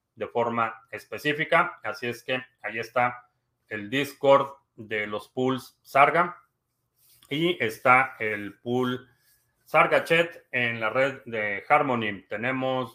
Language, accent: Spanish, Mexican